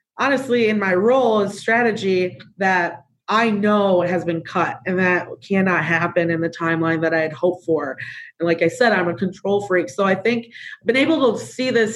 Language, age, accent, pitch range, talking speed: English, 30-49, American, 175-205 Hz, 205 wpm